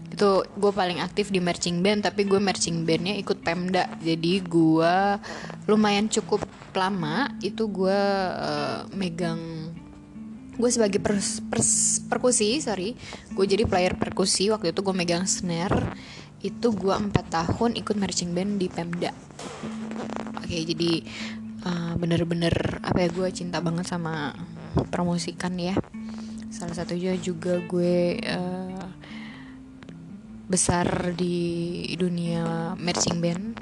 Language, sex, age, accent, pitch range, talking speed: Indonesian, female, 20-39, native, 175-215 Hz, 120 wpm